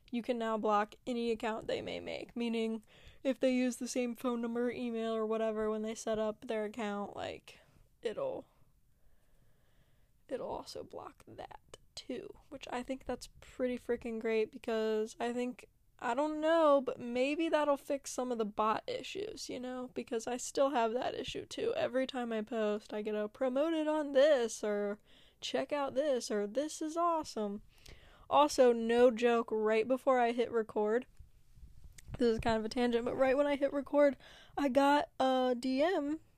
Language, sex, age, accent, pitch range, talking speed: English, female, 10-29, American, 235-295 Hz, 175 wpm